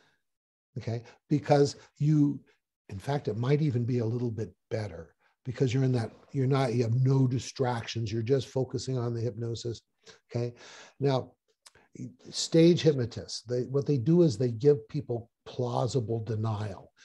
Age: 60-79